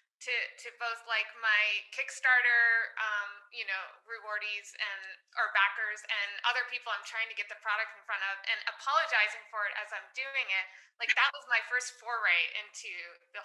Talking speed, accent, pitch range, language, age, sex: 185 wpm, American, 205-250 Hz, English, 20-39, female